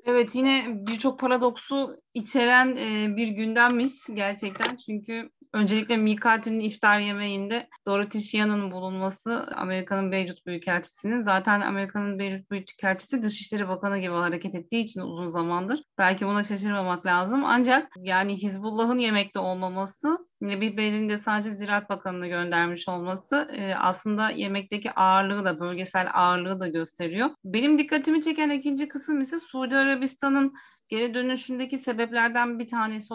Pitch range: 195-255 Hz